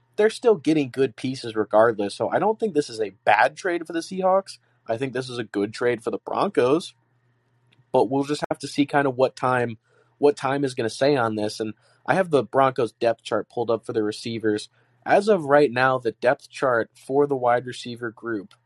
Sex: male